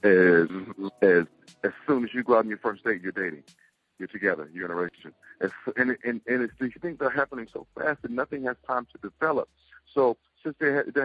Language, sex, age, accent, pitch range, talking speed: English, male, 40-59, American, 110-130 Hz, 230 wpm